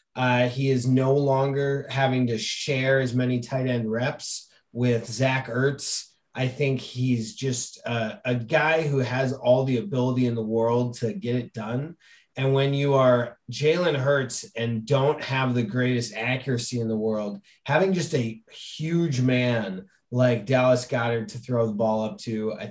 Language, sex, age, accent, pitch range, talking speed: English, male, 30-49, American, 115-140 Hz, 170 wpm